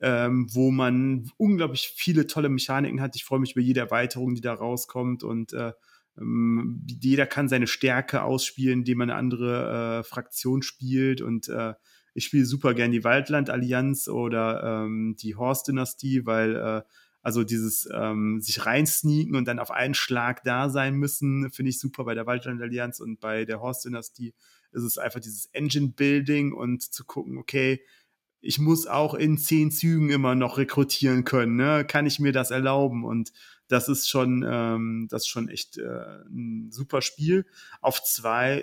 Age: 30-49